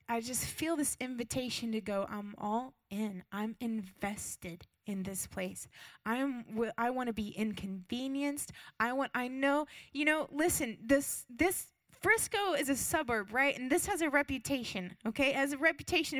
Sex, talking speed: female, 165 wpm